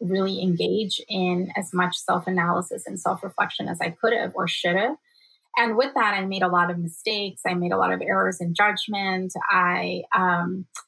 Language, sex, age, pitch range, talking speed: English, female, 20-39, 185-220 Hz, 190 wpm